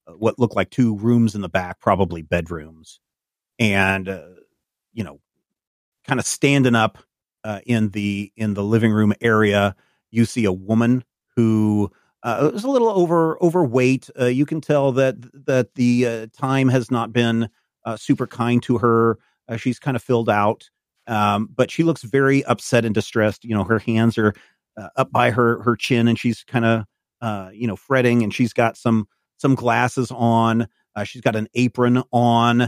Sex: male